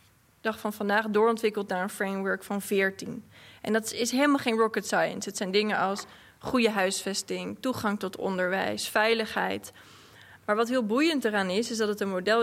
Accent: Dutch